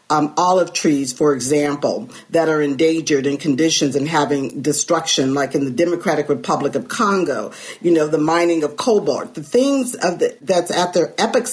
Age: 50-69